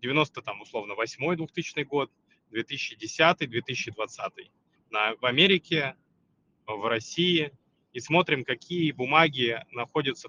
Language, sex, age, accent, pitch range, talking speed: Russian, male, 20-39, native, 120-155 Hz, 100 wpm